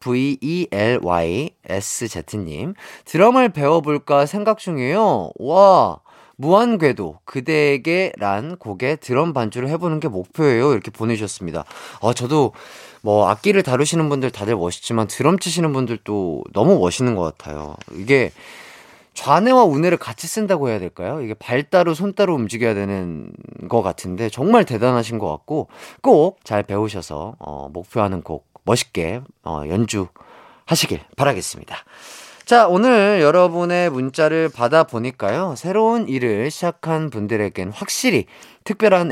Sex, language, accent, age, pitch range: male, Korean, native, 30-49, 110-175 Hz